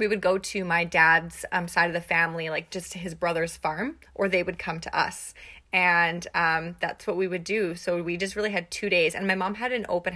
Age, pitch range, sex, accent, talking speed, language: 20-39, 170-205 Hz, female, American, 255 wpm, English